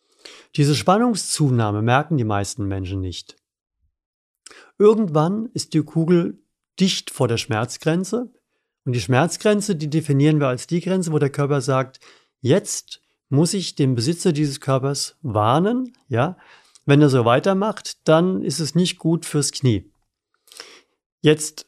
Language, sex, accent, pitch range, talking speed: German, male, German, 125-170 Hz, 135 wpm